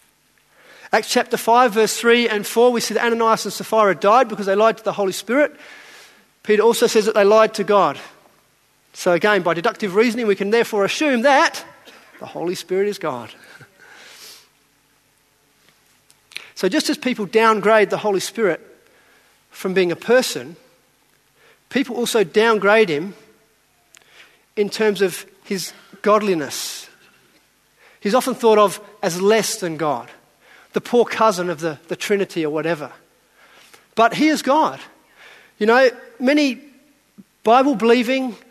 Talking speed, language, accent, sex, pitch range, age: 140 wpm, English, Australian, male, 205-245 Hz, 40-59